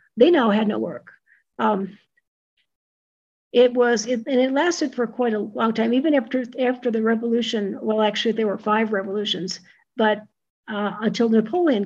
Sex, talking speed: female, 160 wpm